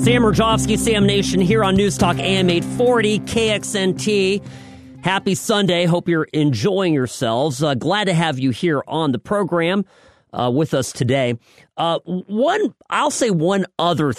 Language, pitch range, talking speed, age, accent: English, 130-190 Hz, 150 wpm, 40-59, American